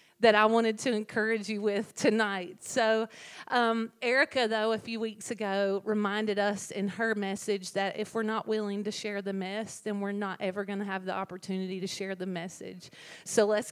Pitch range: 210-245 Hz